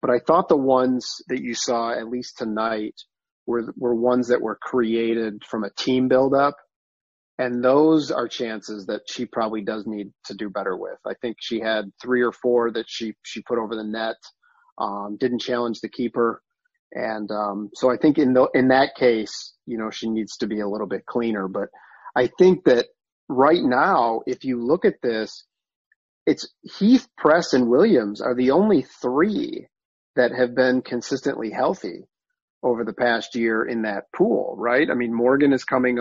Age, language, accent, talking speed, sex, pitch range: 40-59, English, American, 185 wpm, male, 110-130 Hz